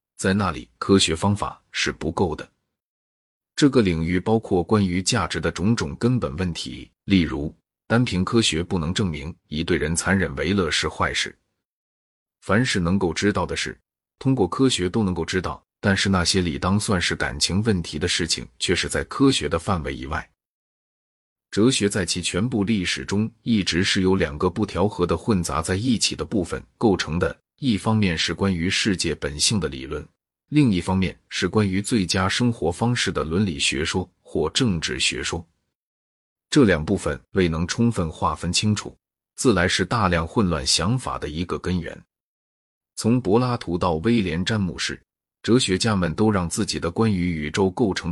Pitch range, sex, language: 85-105 Hz, male, Chinese